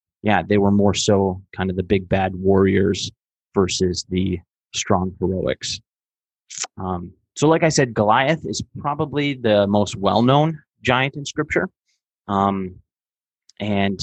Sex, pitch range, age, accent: male, 100-120 Hz, 30-49, American